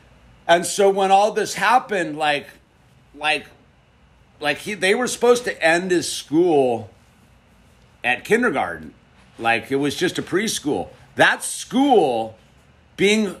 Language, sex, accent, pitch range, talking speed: English, male, American, 125-175 Hz, 125 wpm